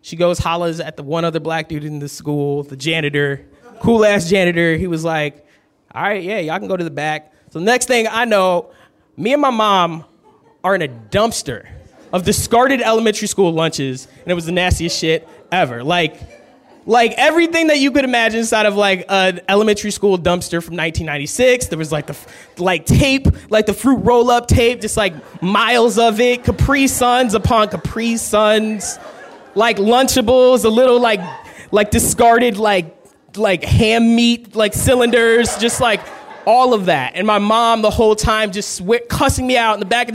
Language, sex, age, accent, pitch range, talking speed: English, male, 20-39, American, 170-245 Hz, 185 wpm